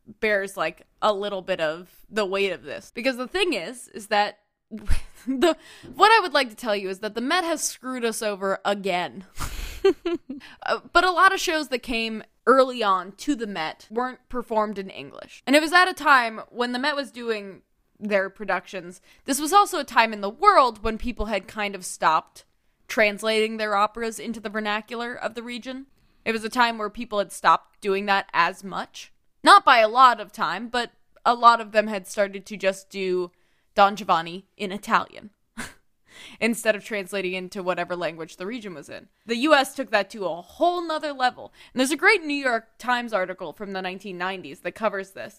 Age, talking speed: 10-29, 200 wpm